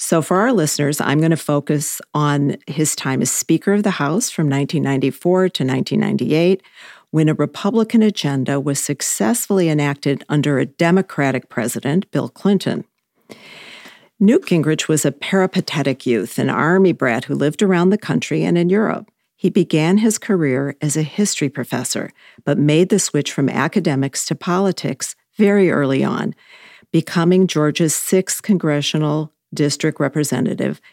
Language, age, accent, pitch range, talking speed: English, 50-69, American, 145-185 Hz, 145 wpm